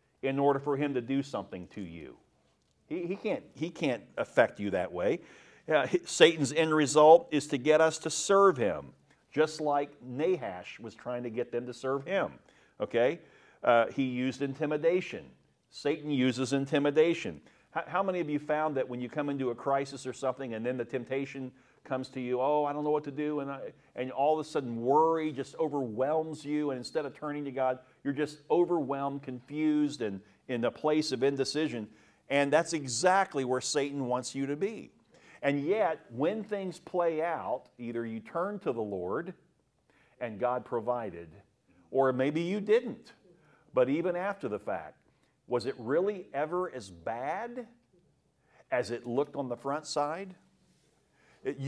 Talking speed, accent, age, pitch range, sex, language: 175 wpm, American, 50-69, 130-160 Hz, male, English